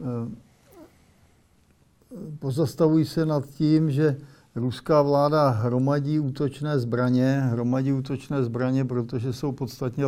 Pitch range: 125-135 Hz